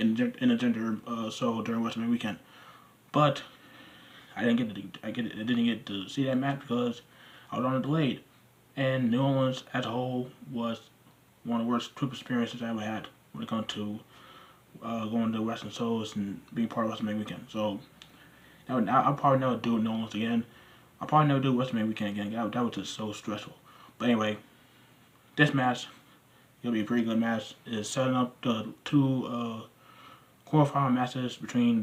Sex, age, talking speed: male, 20-39, 190 wpm